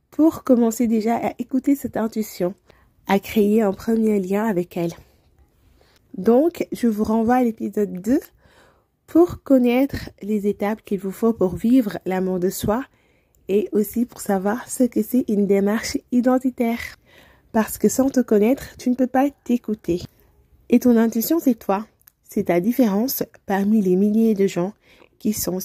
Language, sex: French, female